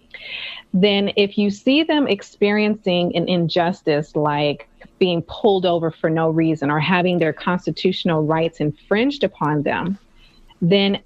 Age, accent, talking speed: 30-49, American, 130 wpm